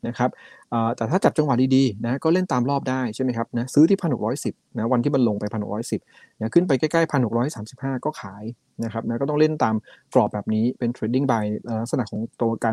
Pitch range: 115-140 Hz